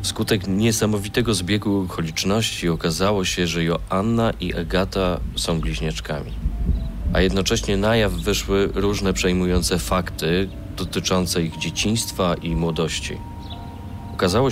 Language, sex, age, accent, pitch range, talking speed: Polish, male, 40-59, native, 85-100 Hz, 110 wpm